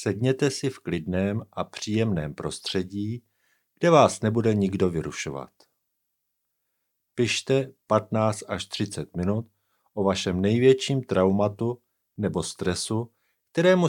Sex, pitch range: male, 90-120 Hz